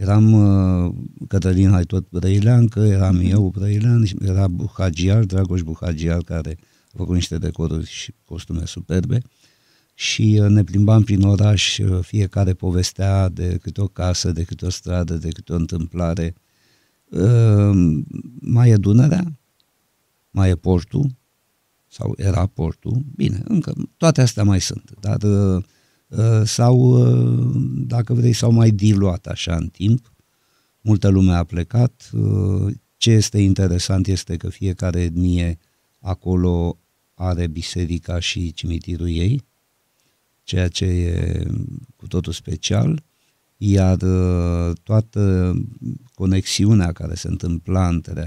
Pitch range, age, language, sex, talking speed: 90-115 Hz, 50-69, Romanian, male, 115 wpm